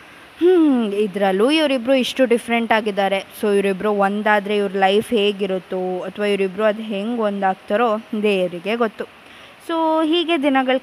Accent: native